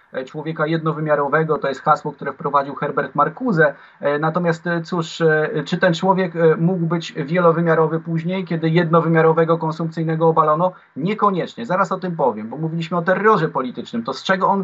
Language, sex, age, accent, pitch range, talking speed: Polish, male, 30-49, native, 155-180 Hz, 150 wpm